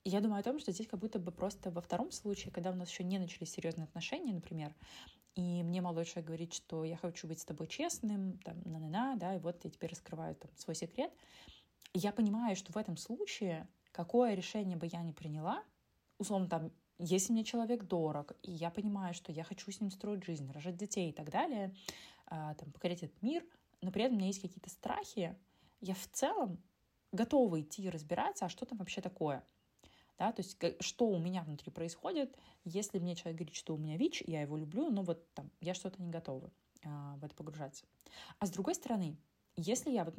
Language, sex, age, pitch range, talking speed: Russian, female, 20-39, 170-220 Hz, 210 wpm